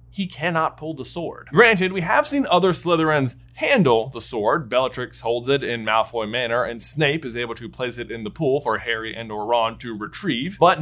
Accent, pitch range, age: American, 125-190 Hz, 20-39